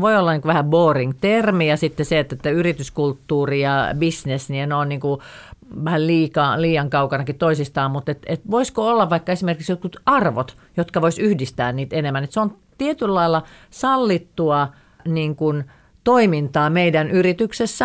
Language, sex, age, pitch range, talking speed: Finnish, female, 40-59, 150-200 Hz, 155 wpm